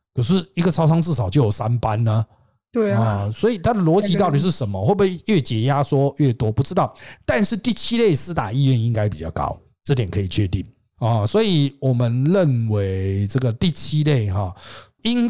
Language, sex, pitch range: Chinese, male, 110-165 Hz